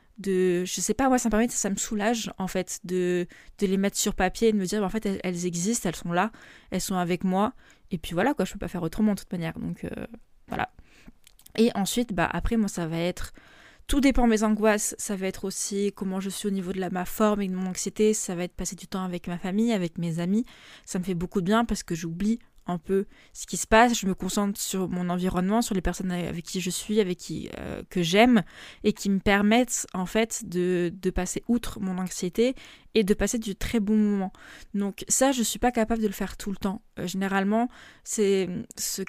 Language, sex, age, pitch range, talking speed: French, female, 20-39, 185-220 Hz, 245 wpm